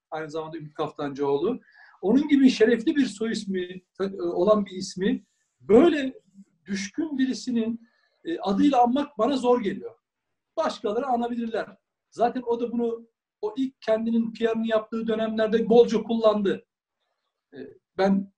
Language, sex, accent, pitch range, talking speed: Turkish, male, native, 190-240 Hz, 120 wpm